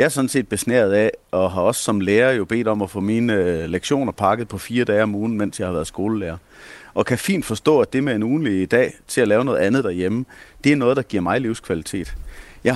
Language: English